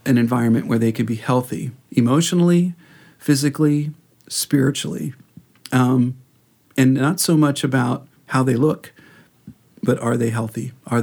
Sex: male